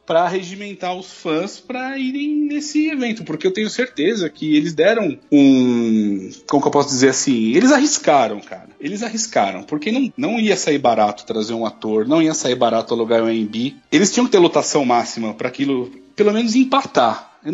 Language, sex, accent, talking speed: Portuguese, male, Brazilian, 190 wpm